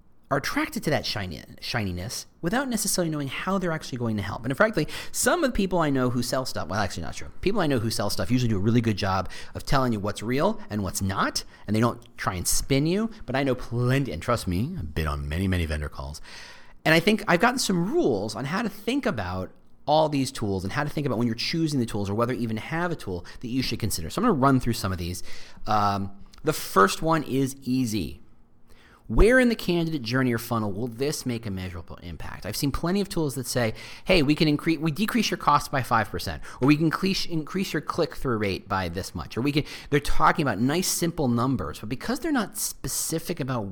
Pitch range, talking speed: 105-155 Hz, 245 wpm